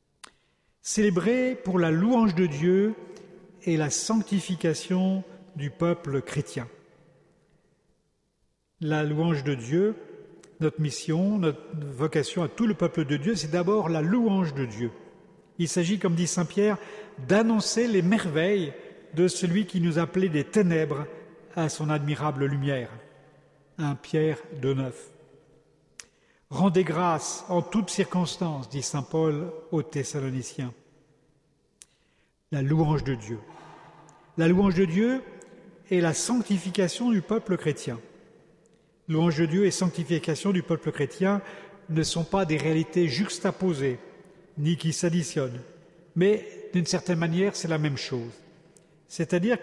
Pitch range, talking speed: 155-195 Hz, 125 wpm